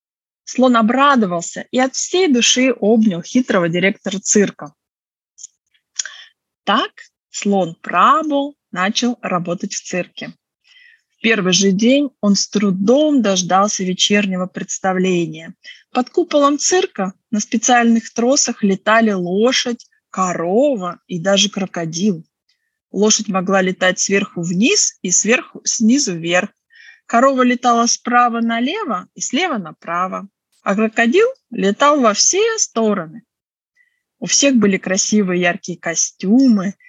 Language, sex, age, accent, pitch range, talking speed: Ukrainian, female, 20-39, native, 185-250 Hz, 105 wpm